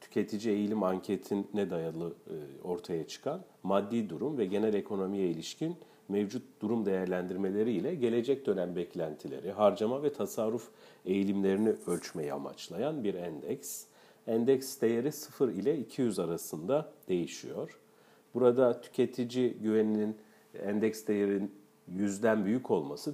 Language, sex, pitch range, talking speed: Turkish, male, 95-115 Hz, 110 wpm